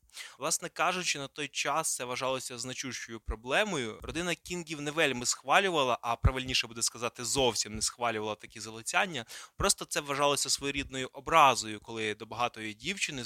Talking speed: 145 wpm